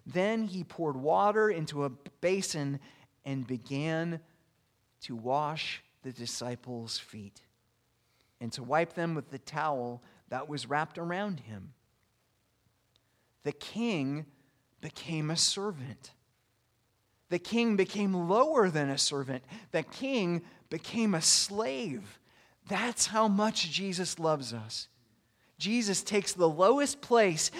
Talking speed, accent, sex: 115 wpm, American, male